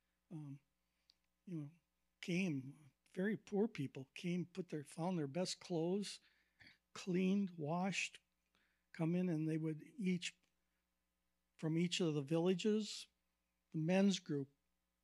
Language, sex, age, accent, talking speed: English, male, 60-79, American, 120 wpm